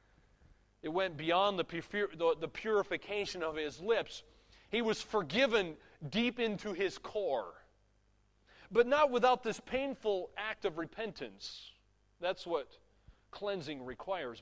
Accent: American